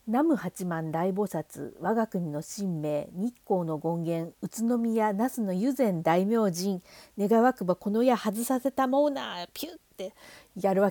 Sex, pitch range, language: female, 180-275 Hz, Japanese